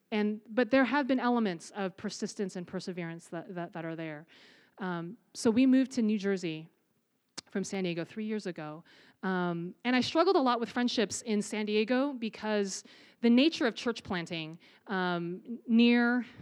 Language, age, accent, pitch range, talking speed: English, 30-49, American, 195-245 Hz, 170 wpm